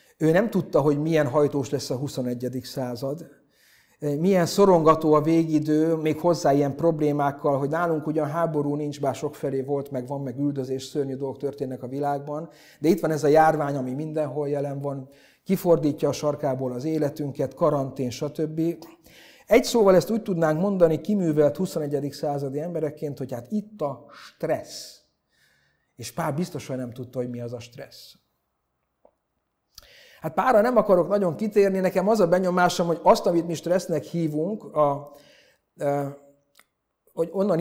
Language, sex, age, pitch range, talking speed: Hungarian, male, 50-69, 145-180 Hz, 155 wpm